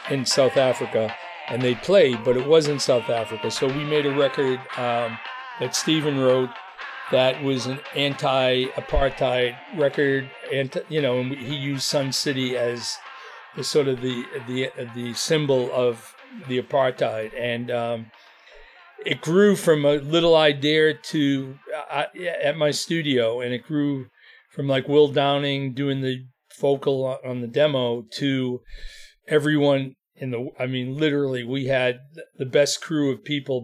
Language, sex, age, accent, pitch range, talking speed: English, male, 40-59, American, 125-150 Hz, 155 wpm